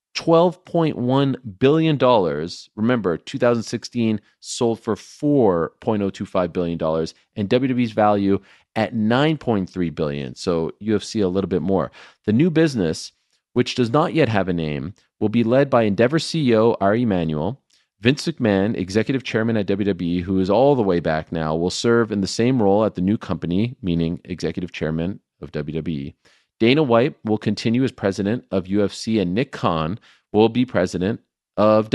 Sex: male